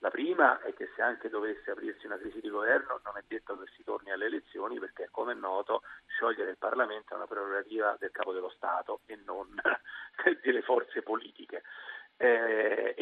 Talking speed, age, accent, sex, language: 185 wpm, 40-59, native, male, Italian